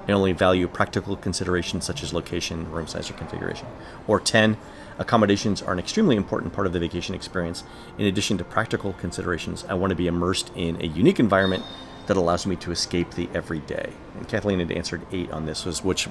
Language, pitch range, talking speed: English, 90-105 Hz, 195 wpm